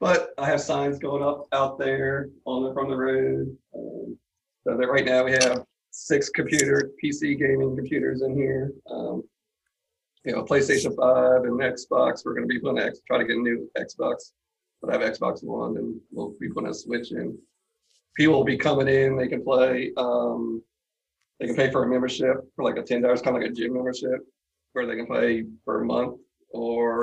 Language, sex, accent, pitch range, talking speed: English, male, American, 120-140 Hz, 200 wpm